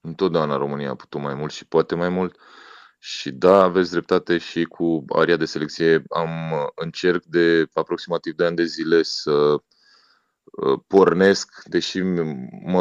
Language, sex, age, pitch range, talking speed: Romanian, male, 20-39, 90-110 Hz, 145 wpm